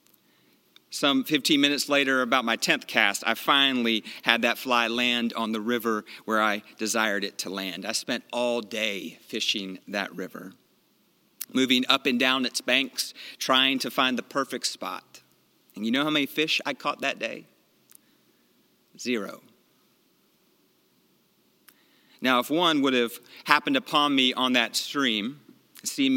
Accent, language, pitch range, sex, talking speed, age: American, English, 115-145 Hz, male, 150 wpm, 40-59